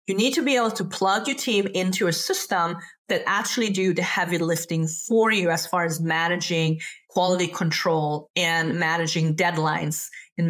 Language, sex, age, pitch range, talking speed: English, female, 30-49, 170-210 Hz, 170 wpm